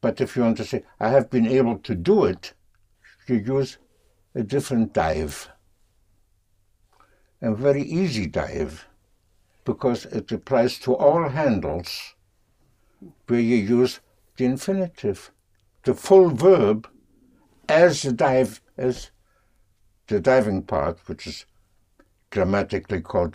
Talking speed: 120 wpm